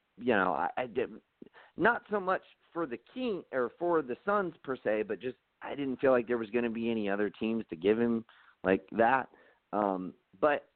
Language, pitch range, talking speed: English, 105-140 Hz, 210 wpm